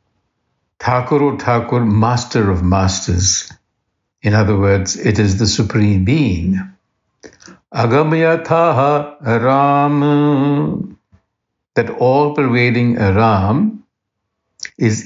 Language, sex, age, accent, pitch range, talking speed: English, male, 60-79, Indian, 100-125 Hz, 70 wpm